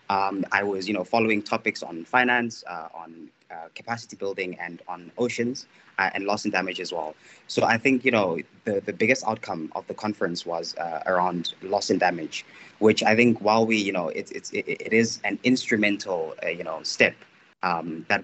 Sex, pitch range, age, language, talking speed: male, 90-115 Hz, 20-39, English, 195 wpm